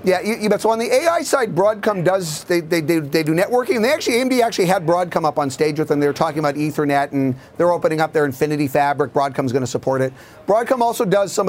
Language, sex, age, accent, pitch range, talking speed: English, male, 40-59, American, 145-195 Hz, 240 wpm